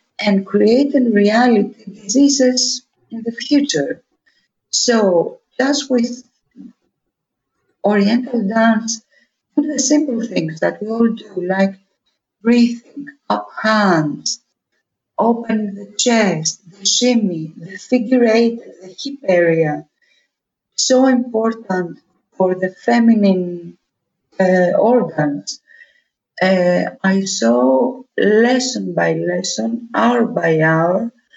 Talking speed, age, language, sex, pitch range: 100 wpm, 50-69, English, female, 190-240 Hz